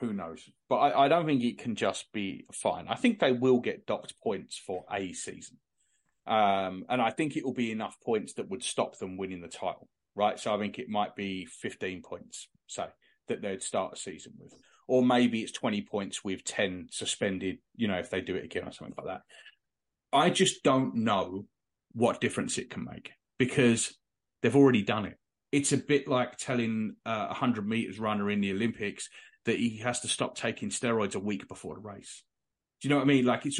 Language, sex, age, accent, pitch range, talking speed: English, male, 30-49, British, 105-140 Hz, 210 wpm